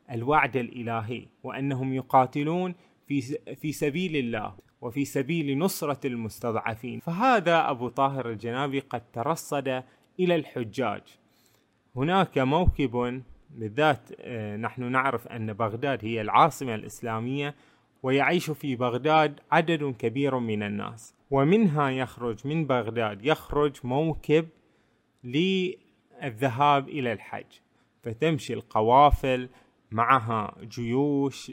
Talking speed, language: 95 wpm, Arabic